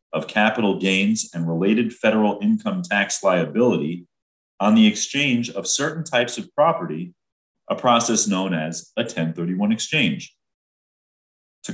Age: 40-59